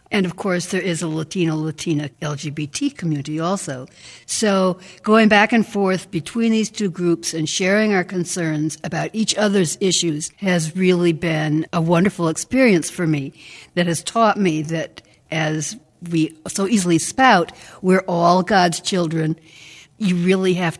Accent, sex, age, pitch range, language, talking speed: American, female, 60-79, 155-185 Hz, English, 150 wpm